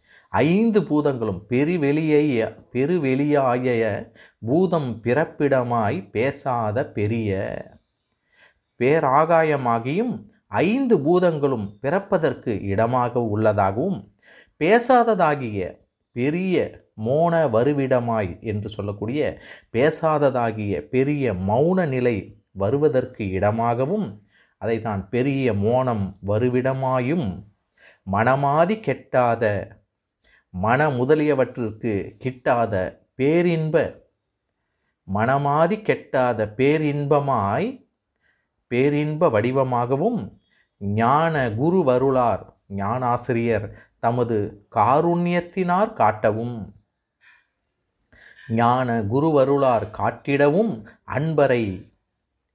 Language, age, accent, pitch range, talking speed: Tamil, 30-49, native, 105-150 Hz, 55 wpm